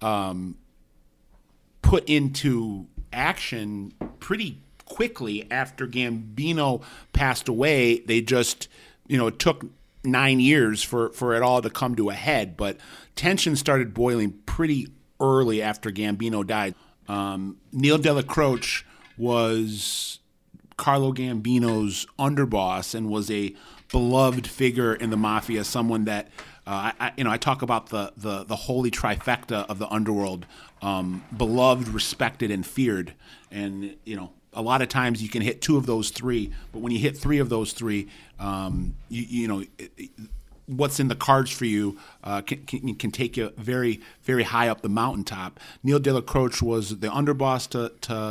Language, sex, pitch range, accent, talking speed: English, male, 105-130 Hz, American, 160 wpm